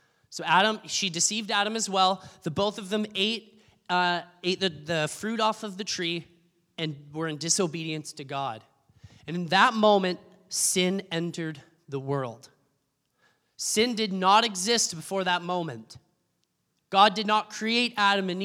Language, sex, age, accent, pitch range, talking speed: English, male, 20-39, American, 160-210 Hz, 155 wpm